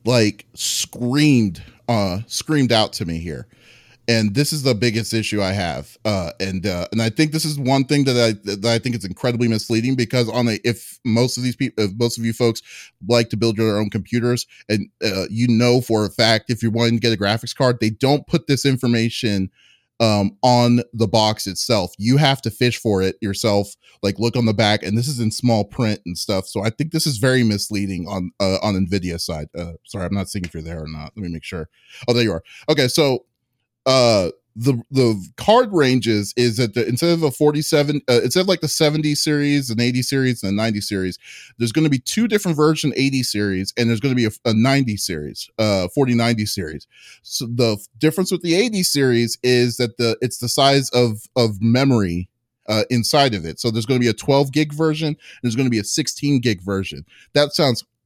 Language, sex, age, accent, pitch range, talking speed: English, male, 30-49, American, 105-130 Hz, 220 wpm